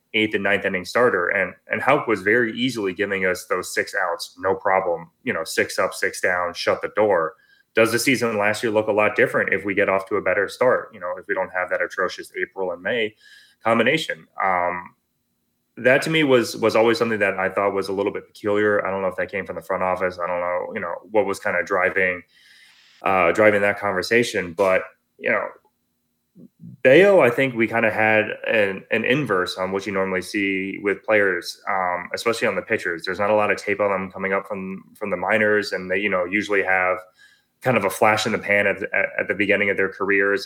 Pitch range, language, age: 95-110 Hz, English, 20-39